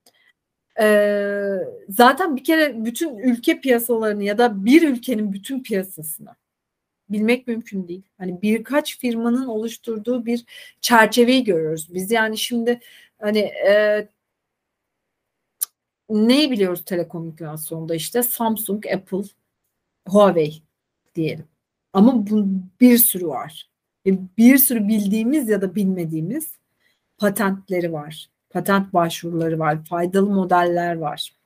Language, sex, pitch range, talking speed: Turkish, female, 180-245 Hz, 105 wpm